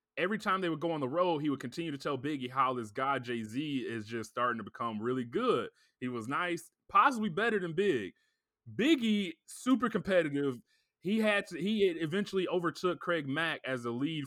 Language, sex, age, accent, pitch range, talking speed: English, male, 20-39, American, 125-170 Hz, 200 wpm